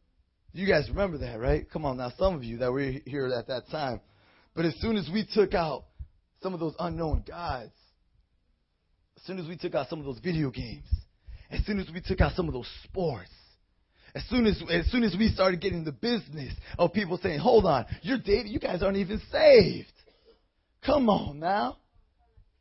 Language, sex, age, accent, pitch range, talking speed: English, male, 30-49, American, 175-275 Hz, 200 wpm